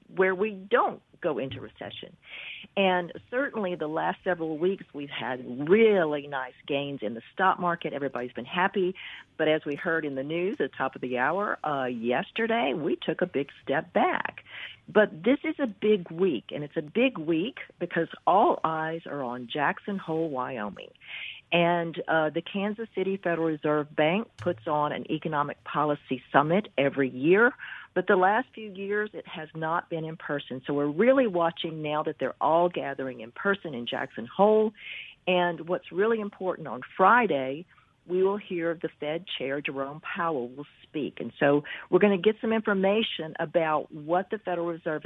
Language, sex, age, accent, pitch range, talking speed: English, female, 50-69, American, 145-190 Hz, 175 wpm